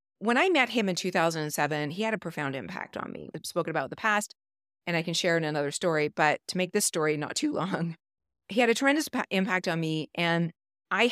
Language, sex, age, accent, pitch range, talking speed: English, female, 30-49, American, 160-210 Hz, 230 wpm